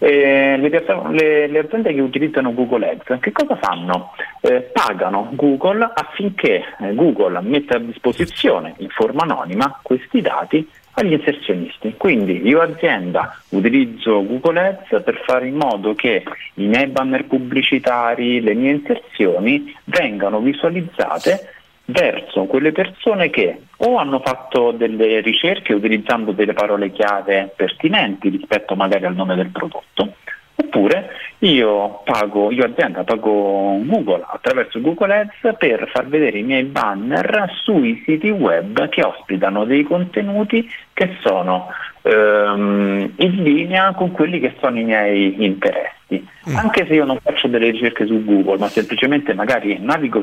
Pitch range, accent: 105-175 Hz, native